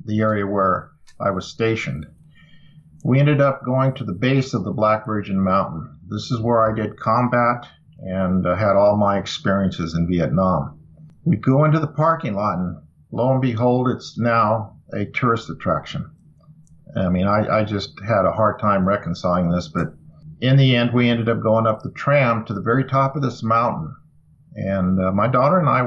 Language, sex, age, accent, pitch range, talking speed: English, male, 50-69, American, 100-125 Hz, 190 wpm